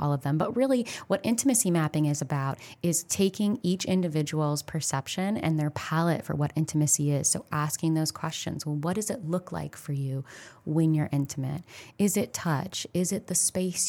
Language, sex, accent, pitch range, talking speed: English, female, American, 150-175 Hz, 190 wpm